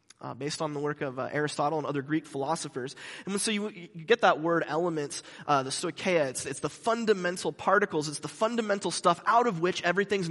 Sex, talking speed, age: male, 210 wpm, 20-39